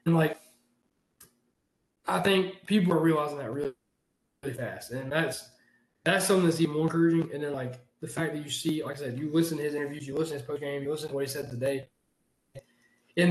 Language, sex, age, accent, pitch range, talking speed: English, male, 20-39, American, 145-175 Hz, 220 wpm